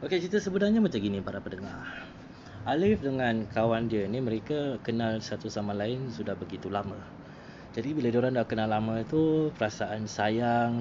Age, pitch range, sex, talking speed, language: 20-39, 110-145 Hz, male, 160 wpm, Malay